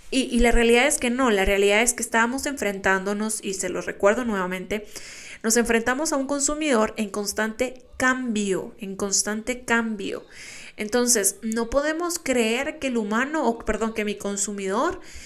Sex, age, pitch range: female, 20-39, 205-250 Hz